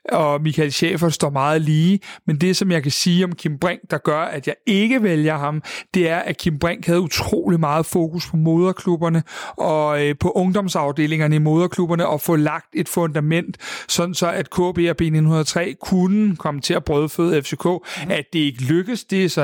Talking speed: 190 wpm